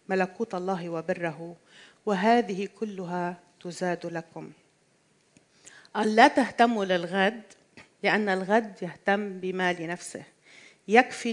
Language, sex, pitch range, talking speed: Arabic, female, 180-235 Hz, 90 wpm